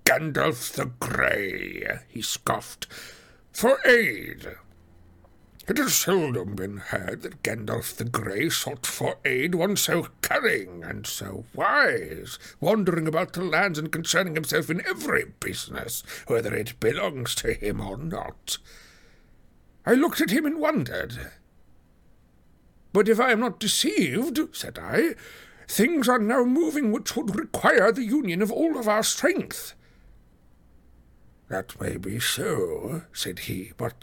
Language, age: English, 60-79